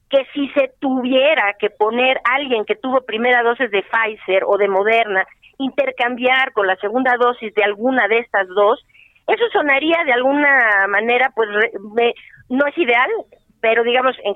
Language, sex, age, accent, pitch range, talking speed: Spanish, female, 40-59, Mexican, 220-285 Hz, 170 wpm